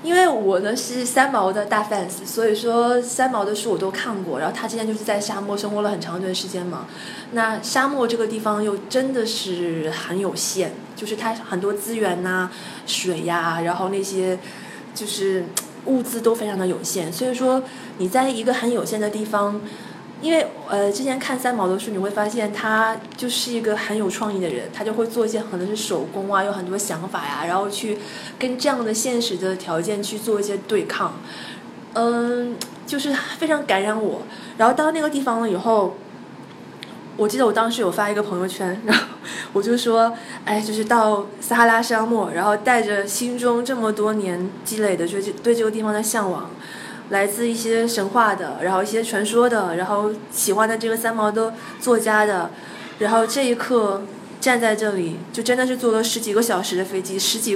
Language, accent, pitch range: Chinese, native, 195-235 Hz